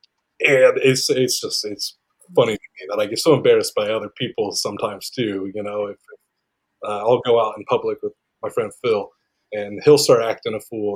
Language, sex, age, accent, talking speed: English, male, 30-49, American, 205 wpm